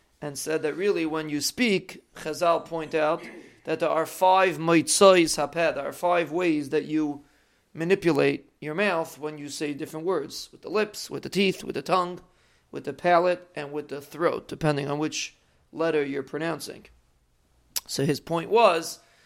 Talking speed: 175 wpm